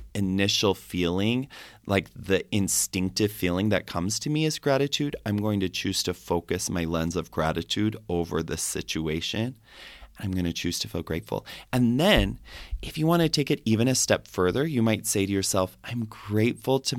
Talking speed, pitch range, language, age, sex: 185 wpm, 90-115 Hz, English, 30-49, male